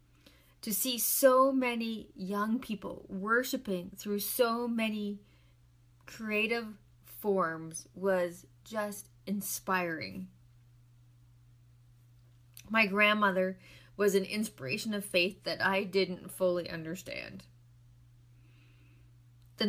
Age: 30-49